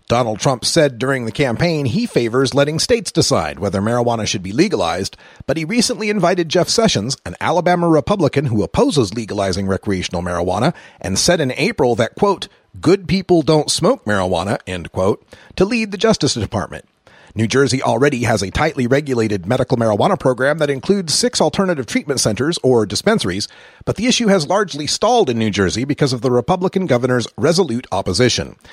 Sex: male